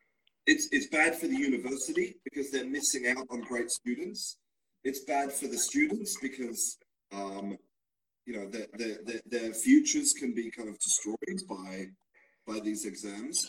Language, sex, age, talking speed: Italian, male, 30-49, 160 wpm